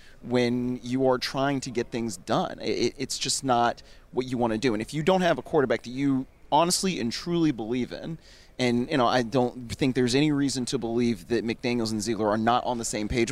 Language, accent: English, American